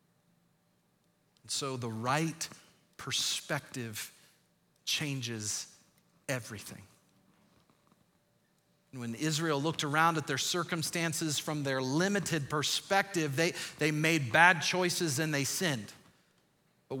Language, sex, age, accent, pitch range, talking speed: English, male, 40-59, American, 135-185 Hz, 95 wpm